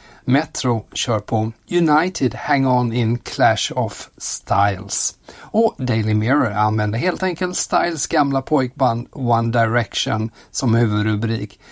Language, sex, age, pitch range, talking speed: Swedish, male, 50-69, 110-135 Hz, 120 wpm